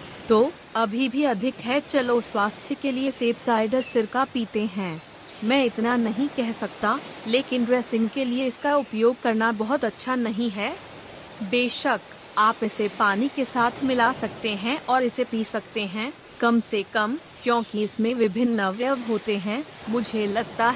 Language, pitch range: Hindi, 215-250 Hz